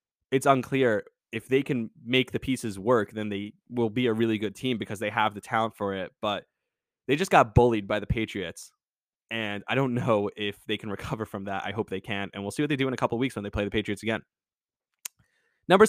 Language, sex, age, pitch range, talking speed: English, male, 20-39, 105-130 Hz, 240 wpm